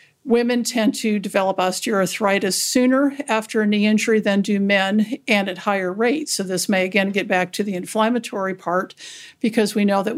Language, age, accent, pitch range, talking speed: English, 50-69, American, 195-230 Hz, 185 wpm